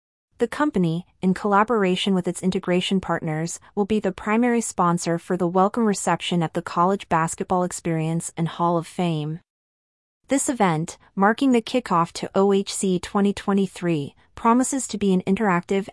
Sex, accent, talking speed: female, American, 145 wpm